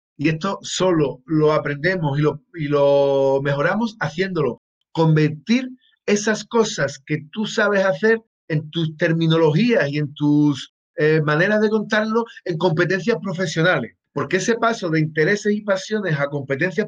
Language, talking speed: Spanish, 140 wpm